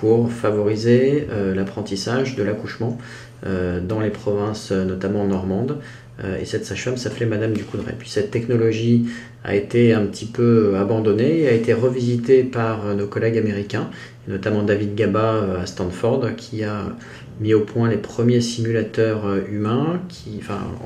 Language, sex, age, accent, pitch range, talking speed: French, male, 30-49, French, 105-120 Hz, 145 wpm